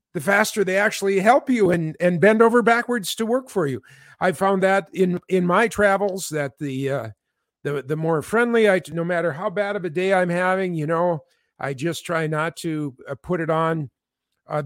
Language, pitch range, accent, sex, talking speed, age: English, 145-190 Hz, American, male, 210 wpm, 50-69